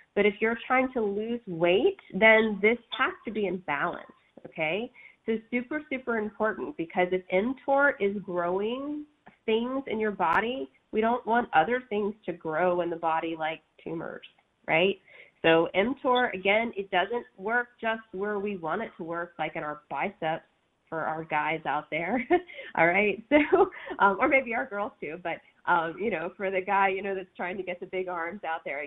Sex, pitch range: female, 170-230 Hz